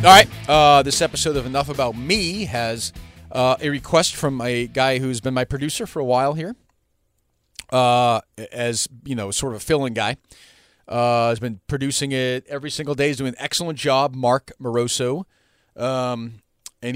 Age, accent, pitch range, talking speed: 40-59, American, 110-140 Hz, 175 wpm